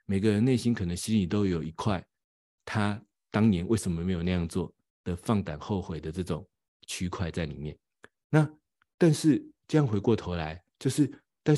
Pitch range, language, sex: 90-125 Hz, Chinese, male